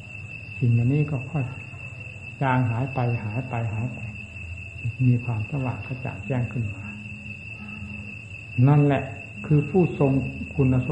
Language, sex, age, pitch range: Thai, male, 60-79, 105-145 Hz